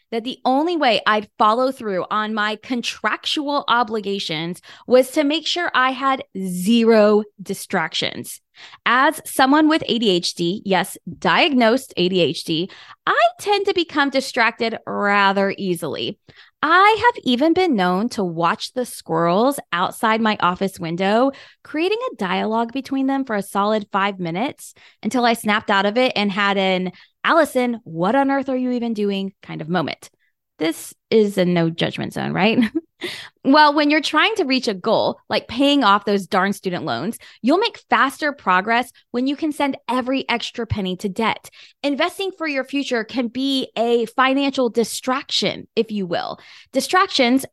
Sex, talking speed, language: female, 155 wpm, English